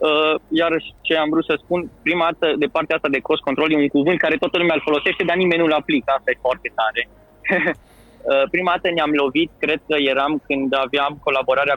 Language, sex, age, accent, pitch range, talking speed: Romanian, male, 20-39, native, 135-180 Hz, 210 wpm